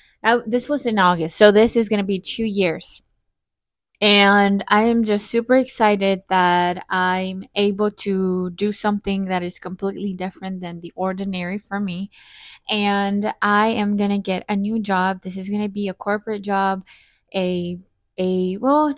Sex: female